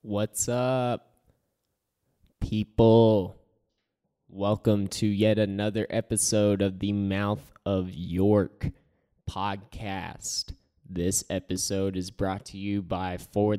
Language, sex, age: English, male, 10-29